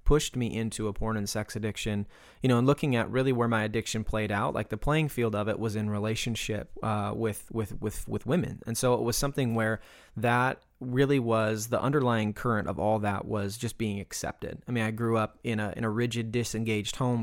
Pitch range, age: 105-115 Hz, 20-39